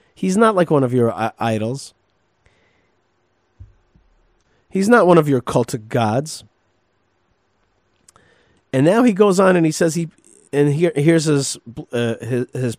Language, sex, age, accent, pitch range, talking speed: English, male, 40-59, American, 125-180 Hz, 140 wpm